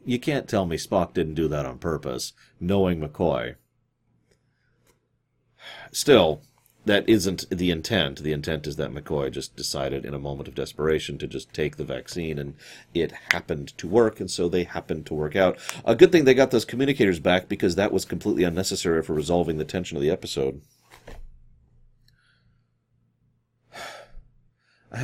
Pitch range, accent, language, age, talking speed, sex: 80-105 Hz, American, English, 40-59, 160 wpm, male